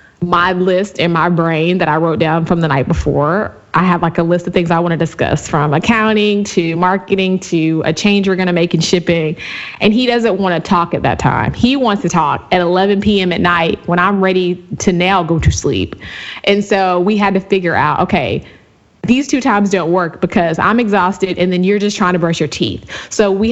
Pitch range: 170-200 Hz